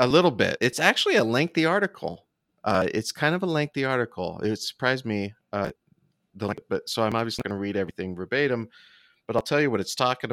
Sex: male